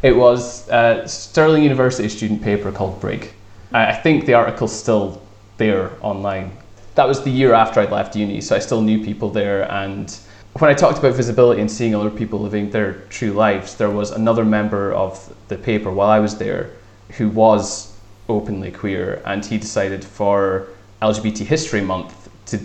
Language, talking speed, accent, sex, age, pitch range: English, 180 wpm, British, male, 20-39, 100-110 Hz